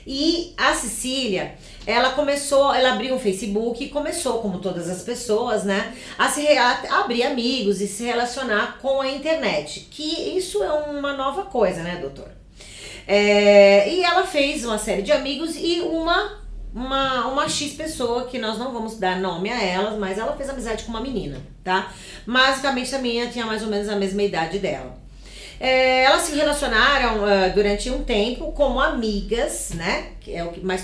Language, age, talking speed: Portuguese, 40-59, 180 wpm